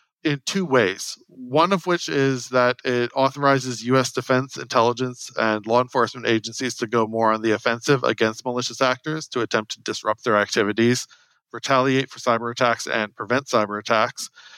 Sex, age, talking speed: male, 40-59, 165 wpm